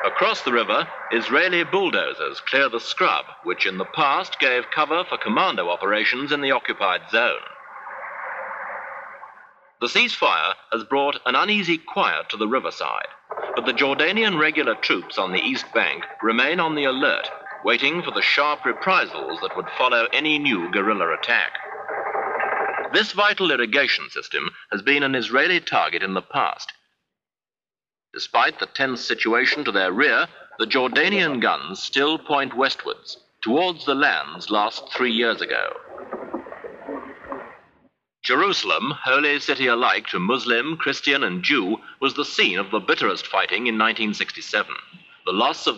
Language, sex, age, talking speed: English, male, 50-69, 145 wpm